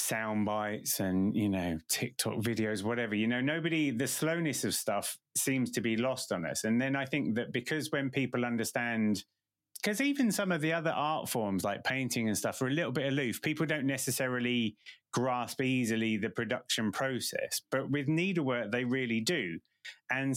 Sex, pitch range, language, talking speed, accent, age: male, 110-135 Hz, English, 185 wpm, British, 30-49